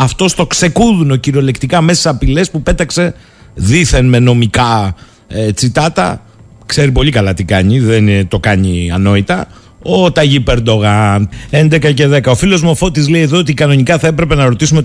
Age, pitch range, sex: 50-69, 120-175 Hz, male